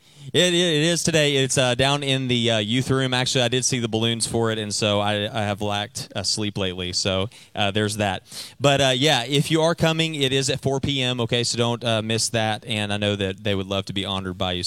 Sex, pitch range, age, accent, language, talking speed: male, 105-130 Hz, 30-49, American, English, 255 wpm